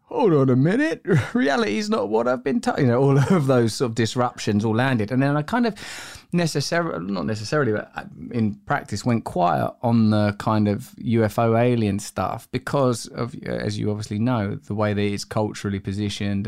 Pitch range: 105-130 Hz